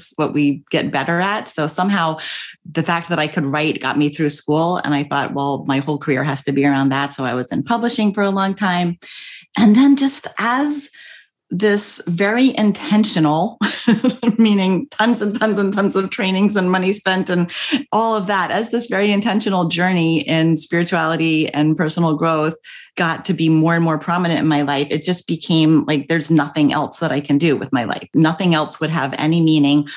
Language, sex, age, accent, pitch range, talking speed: English, female, 30-49, American, 155-200 Hz, 200 wpm